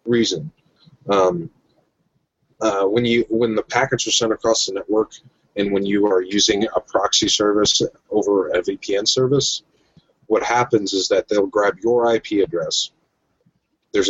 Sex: male